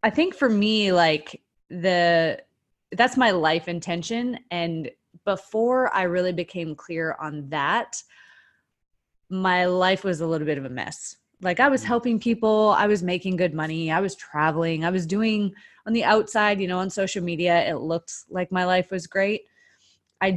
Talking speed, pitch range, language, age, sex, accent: 175 wpm, 155-190 Hz, English, 20-39, female, American